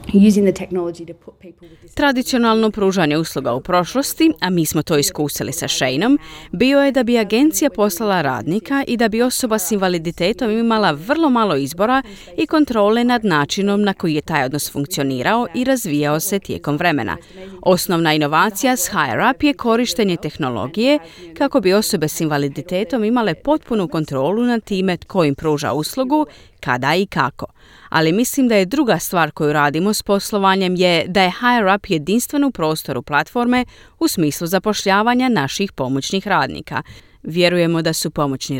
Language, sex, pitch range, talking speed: Croatian, female, 155-230 Hz, 150 wpm